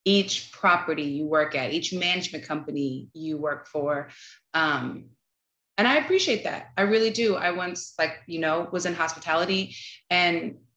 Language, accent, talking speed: English, American, 155 wpm